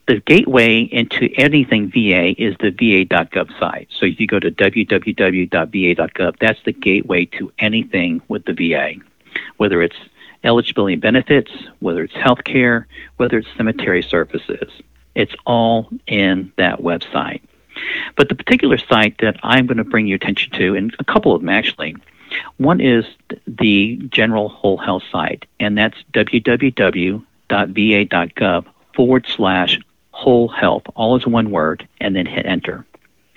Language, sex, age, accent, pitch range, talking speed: English, male, 60-79, American, 105-130 Hz, 145 wpm